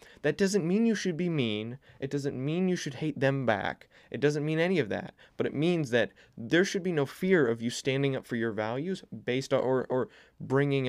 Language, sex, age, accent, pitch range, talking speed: English, male, 20-39, American, 115-150 Hz, 230 wpm